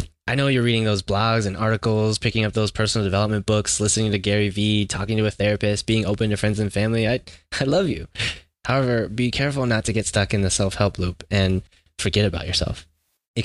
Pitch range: 90-115 Hz